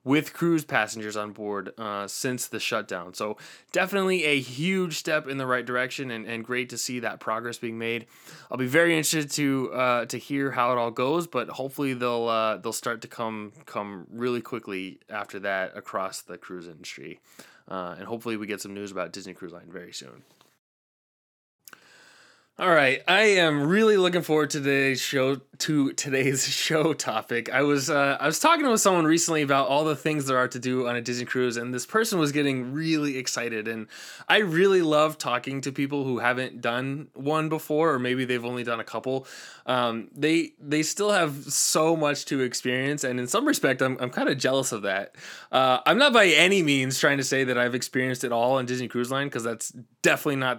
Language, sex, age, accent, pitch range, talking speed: English, male, 20-39, American, 120-155 Hz, 205 wpm